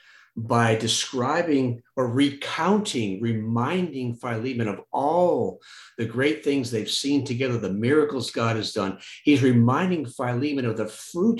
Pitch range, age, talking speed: 110-145 Hz, 50-69, 130 wpm